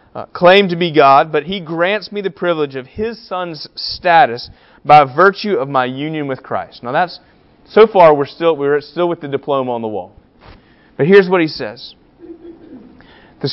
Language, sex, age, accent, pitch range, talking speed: English, male, 30-49, American, 145-190 Hz, 185 wpm